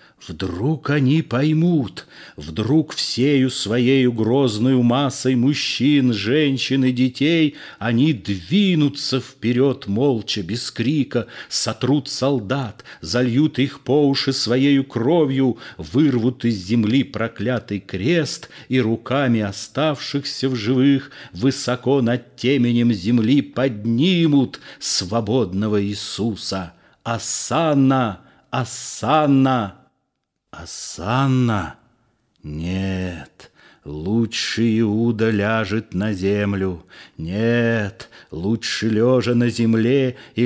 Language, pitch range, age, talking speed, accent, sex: Russian, 110-135 Hz, 40-59, 85 wpm, native, male